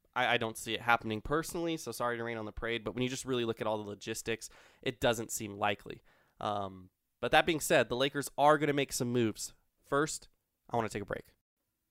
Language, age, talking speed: English, 20-39, 235 wpm